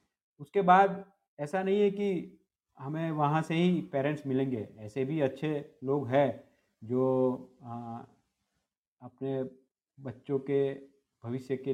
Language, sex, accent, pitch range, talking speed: Hindi, male, native, 135-180 Hz, 125 wpm